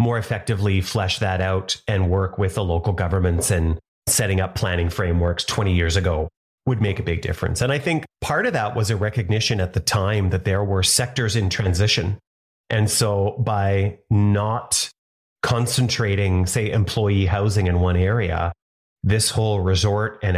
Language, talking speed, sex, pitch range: English, 170 wpm, male, 95-120 Hz